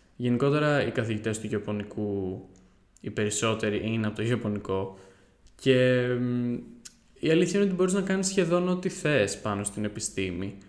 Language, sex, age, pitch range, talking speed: Greek, male, 10-29, 110-125 Hz, 140 wpm